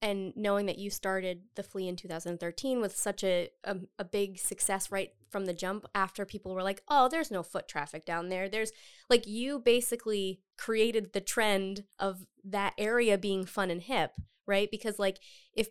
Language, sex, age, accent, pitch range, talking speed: English, female, 20-39, American, 185-220 Hz, 185 wpm